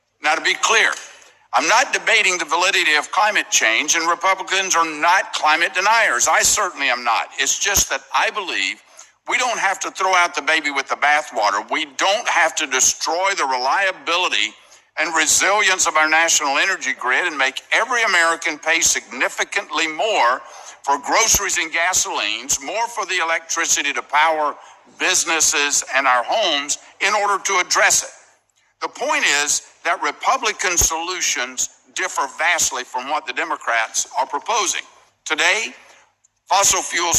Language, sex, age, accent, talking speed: English, male, 60-79, American, 155 wpm